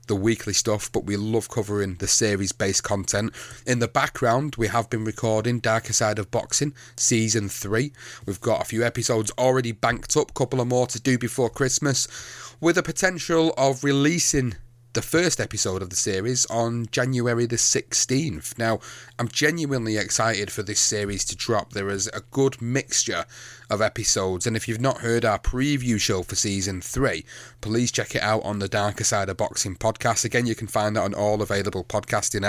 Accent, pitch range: British, 105-125 Hz